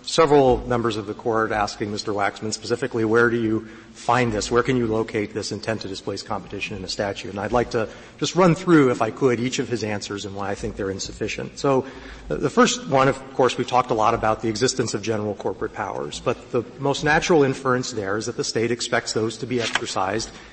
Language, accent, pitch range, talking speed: English, American, 110-140 Hz, 230 wpm